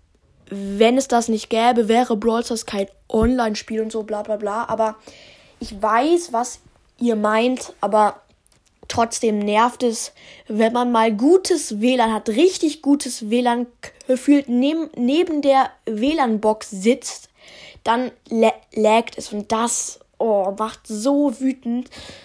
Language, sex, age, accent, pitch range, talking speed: German, female, 10-29, German, 220-255 Hz, 125 wpm